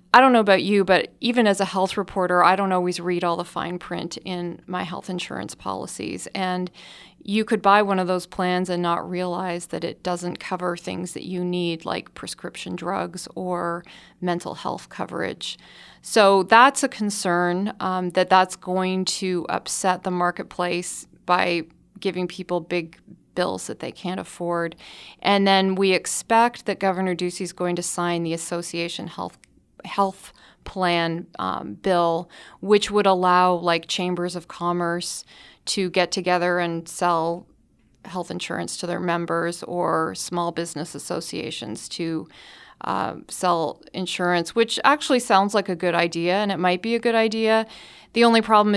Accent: American